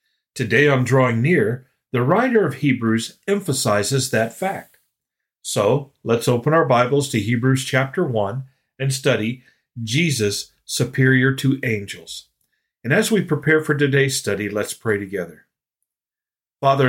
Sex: male